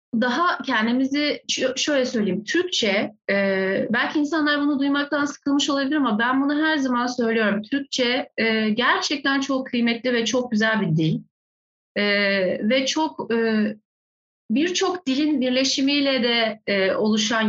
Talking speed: 115 wpm